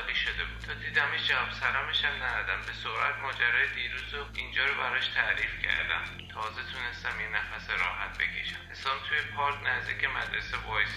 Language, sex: Persian, male